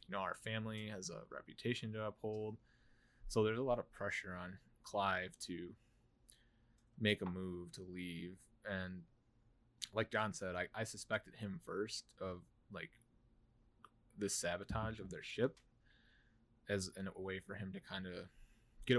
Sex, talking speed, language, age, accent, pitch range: male, 155 wpm, English, 20-39, American, 95-120 Hz